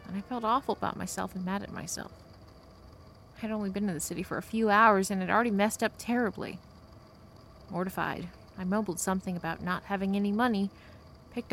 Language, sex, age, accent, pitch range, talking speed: English, female, 30-49, American, 155-205 Hz, 195 wpm